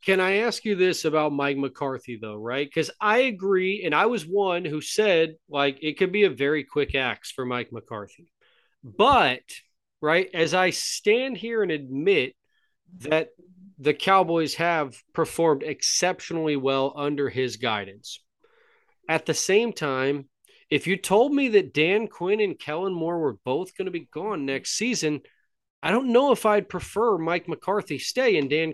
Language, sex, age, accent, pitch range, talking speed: English, male, 30-49, American, 150-210 Hz, 170 wpm